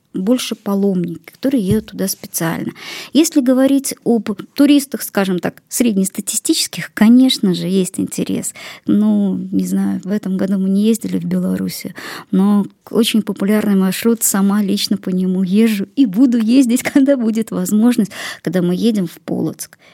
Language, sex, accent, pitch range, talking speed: Russian, male, native, 185-245 Hz, 145 wpm